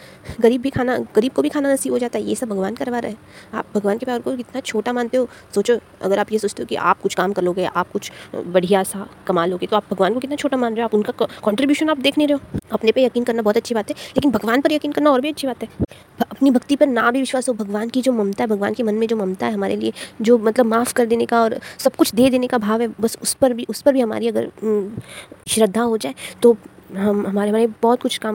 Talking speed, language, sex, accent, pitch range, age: 280 wpm, Hindi, female, native, 215-255 Hz, 20-39